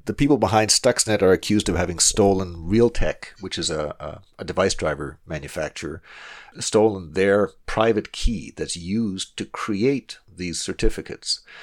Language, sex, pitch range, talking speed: English, male, 85-110 Hz, 145 wpm